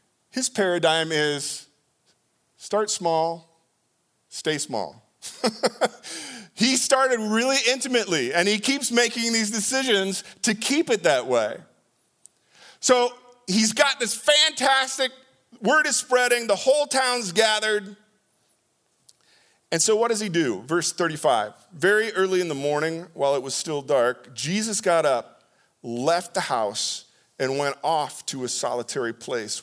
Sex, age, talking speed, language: male, 40-59, 130 wpm, English